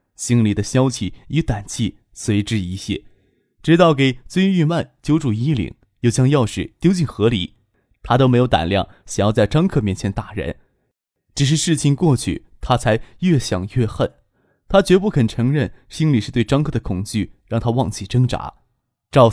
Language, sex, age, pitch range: Chinese, male, 20-39, 105-155 Hz